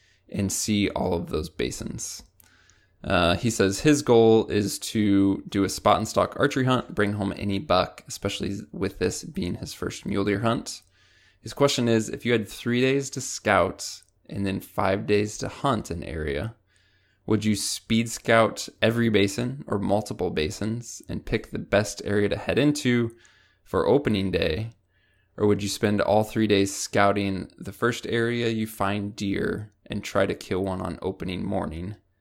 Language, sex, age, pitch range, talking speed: English, male, 20-39, 95-110 Hz, 170 wpm